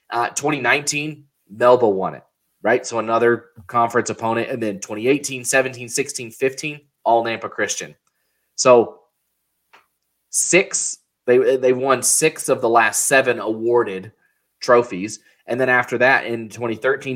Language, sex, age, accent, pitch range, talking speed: English, male, 20-39, American, 110-130 Hz, 125 wpm